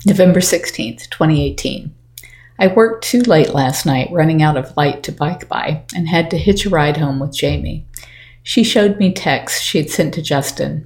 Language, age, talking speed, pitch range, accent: English, 50-69, 190 wpm, 135-165 Hz, American